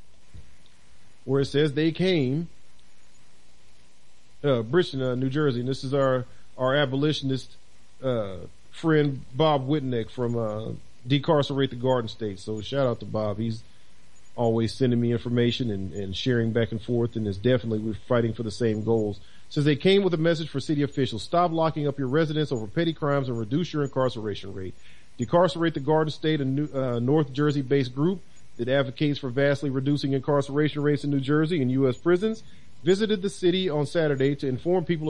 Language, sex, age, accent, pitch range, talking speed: English, male, 40-59, American, 115-160 Hz, 180 wpm